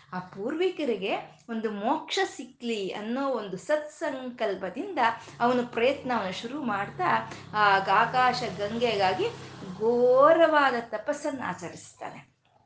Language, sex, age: Kannada, female, 20-39